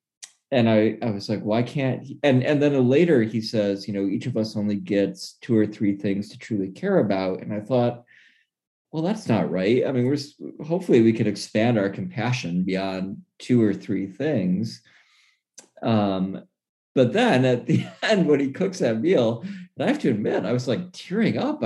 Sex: male